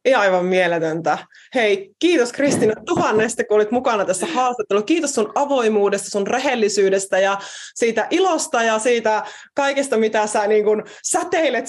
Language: Finnish